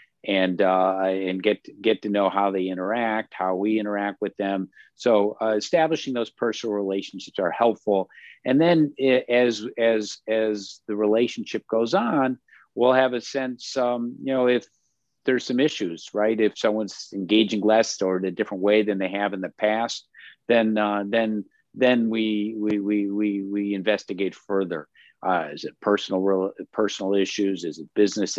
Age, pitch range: 50-69, 95-115 Hz